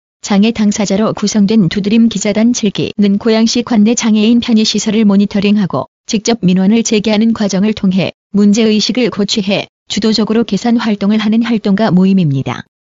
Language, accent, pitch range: Korean, native, 200-225 Hz